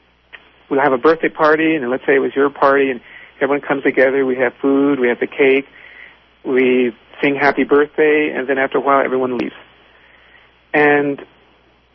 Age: 50-69